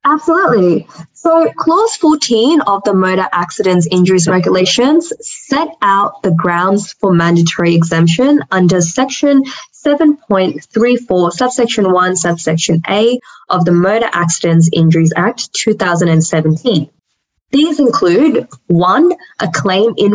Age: 10-29